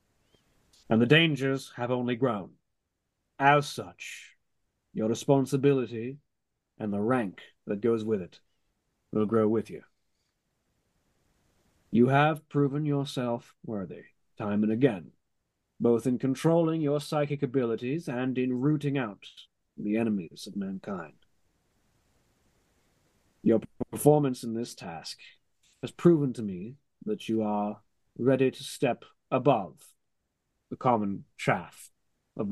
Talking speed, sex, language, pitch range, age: 115 wpm, male, English, 105-135 Hz, 30-49